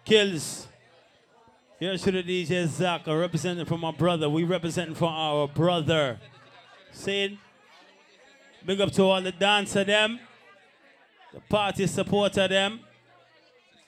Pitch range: 145-195 Hz